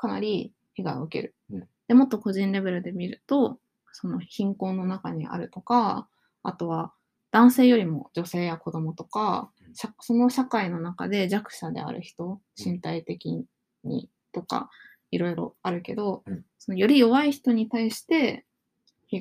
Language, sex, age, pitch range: Japanese, female, 20-39, 170-215 Hz